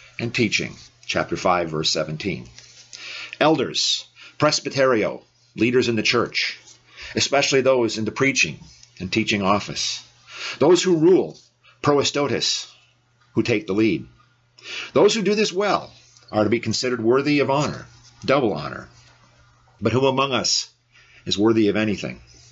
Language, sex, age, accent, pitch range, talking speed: English, male, 50-69, American, 110-140 Hz, 135 wpm